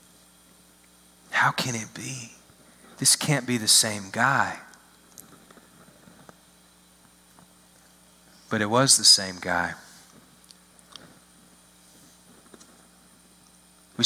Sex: male